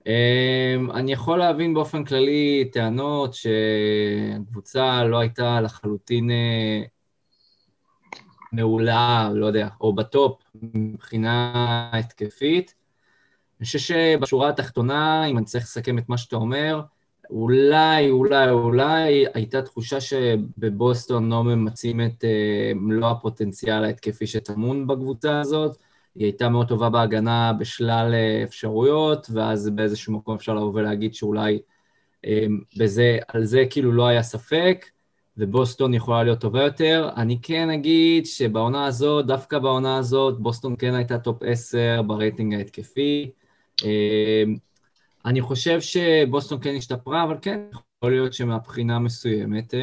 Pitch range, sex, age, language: 110-135 Hz, male, 20-39, Hebrew